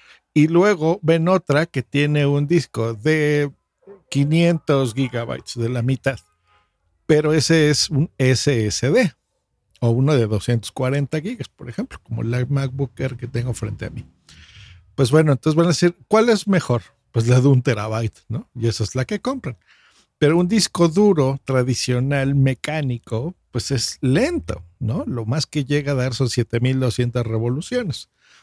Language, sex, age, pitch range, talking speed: Spanish, male, 50-69, 115-155 Hz, 160 wpm